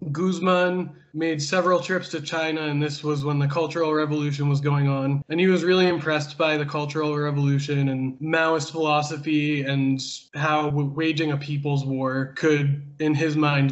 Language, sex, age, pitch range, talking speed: English, male, 20-39, 140-160 Hz, 170 wpm